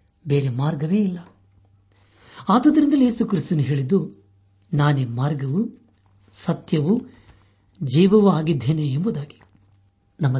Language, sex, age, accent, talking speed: Kannada, male, 60-79, native, 80 wpm